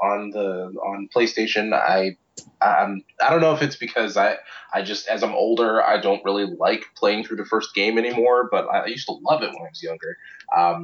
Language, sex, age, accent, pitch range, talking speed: English, male, 20-39, American, 95-125 Hz, 215 wpm